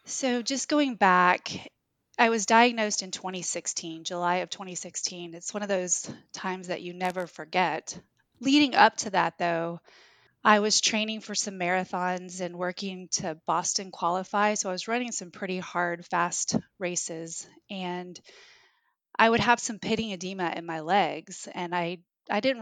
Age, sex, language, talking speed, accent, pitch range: 30-49, female, English, 160 wpm, American, 175-215 Hz